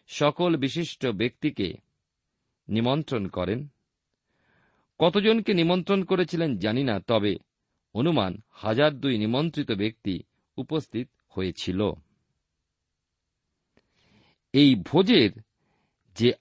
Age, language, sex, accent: 50-69, Bengali, male, native